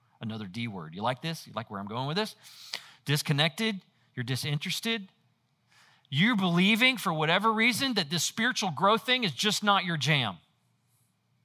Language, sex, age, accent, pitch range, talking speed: English, male, 40-59, American, 140-230 Hz, 160 wpm